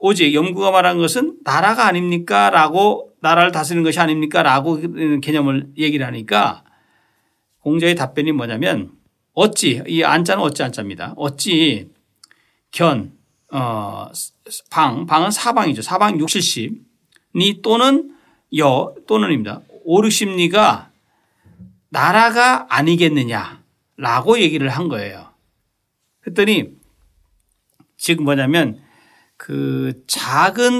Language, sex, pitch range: Korean, male, 135-185 Hz